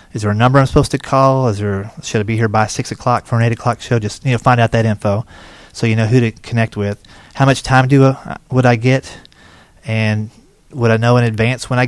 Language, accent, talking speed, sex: English, American, 265 wpm, male